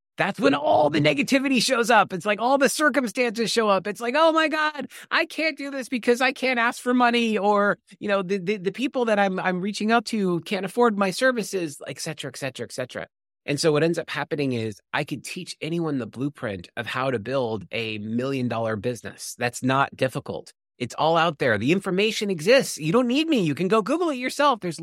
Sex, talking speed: male, 225 wpm